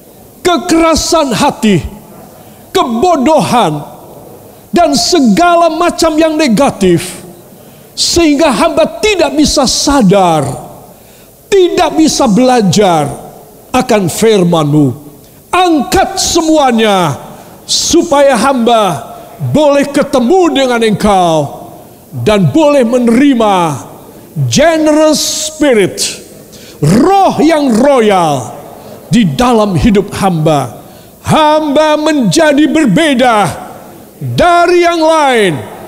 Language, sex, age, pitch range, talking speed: Indonesian, male, 50-69, 185-305 Hz, 75 wpm